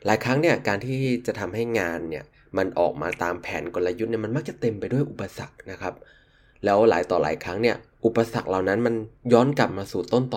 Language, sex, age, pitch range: Thai, male, 20-39, 95-130 Hz